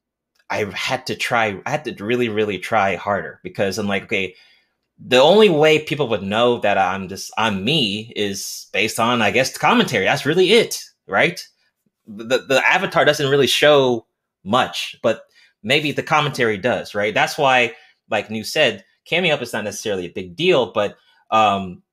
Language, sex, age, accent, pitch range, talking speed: English, male, 20-39, American, 110-150 Hz, 180 wpm